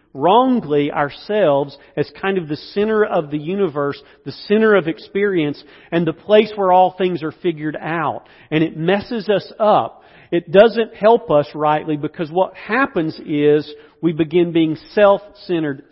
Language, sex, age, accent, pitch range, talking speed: English, male, 40-59, American, 135-180 Hz, 155 wpm